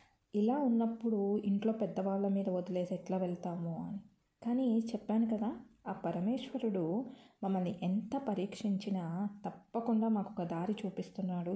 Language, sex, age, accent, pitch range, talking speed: Telugu, female, 20-39, native, 180-210 Hz, 115 wpm